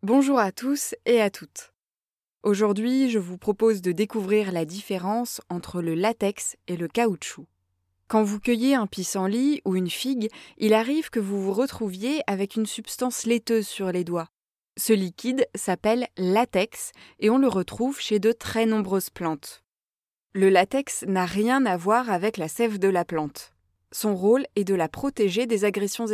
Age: 20-39